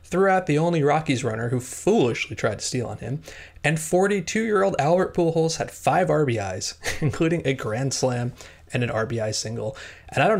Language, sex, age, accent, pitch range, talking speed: English, male, 30-49, American, 110-145 Hz, 180 wpm